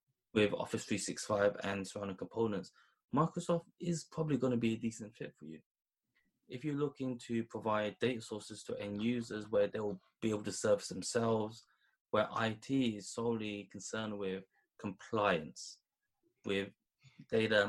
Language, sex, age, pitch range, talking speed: English, male, 20-39, 105-120 Hz, 145 wpm